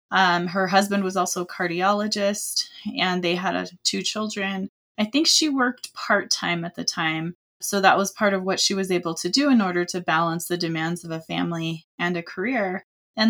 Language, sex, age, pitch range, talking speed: English, female, 20-39, 175-215 Hz, 200 wpm